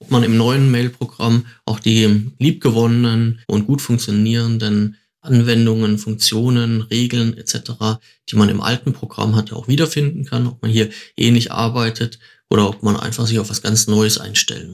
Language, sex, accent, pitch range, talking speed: German, male, German, 110-125 Hz, 165 wpm